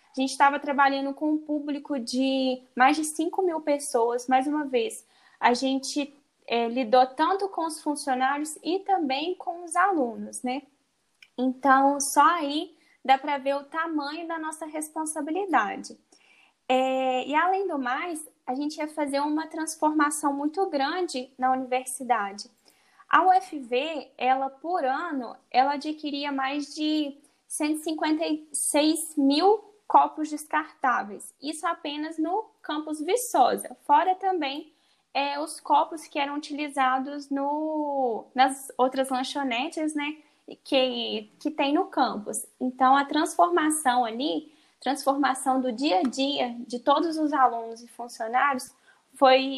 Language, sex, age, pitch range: Portuguese, female, 10-29, 260-315 Hz